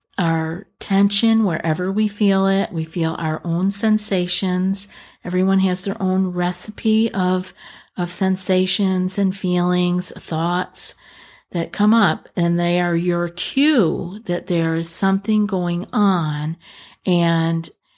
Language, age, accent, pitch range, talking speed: English, 50-69, American, 170-205 Hz, 125 wpm